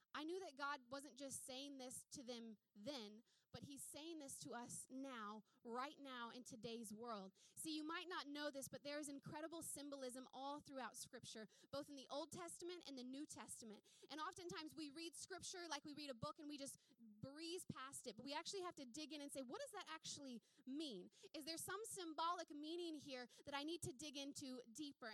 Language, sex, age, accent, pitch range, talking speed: English, female, 20-39, American, 255-315 Hz, 210 wpm